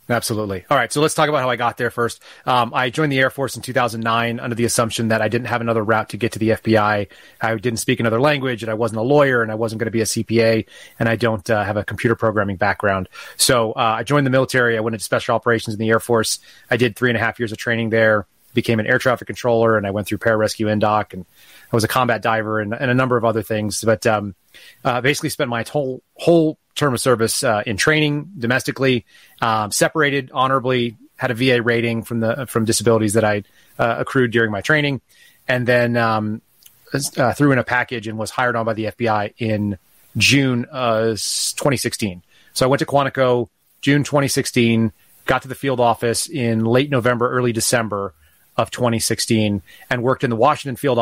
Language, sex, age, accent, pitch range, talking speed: English, male, 30-49, American, 110-130 Hz, 220 wpm